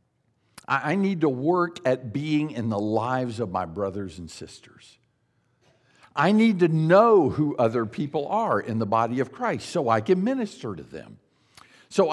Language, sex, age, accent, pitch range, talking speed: English, male, 50-69, American, 130-195 Hz, 170 wpm